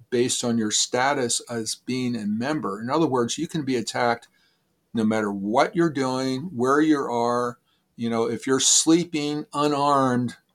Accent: American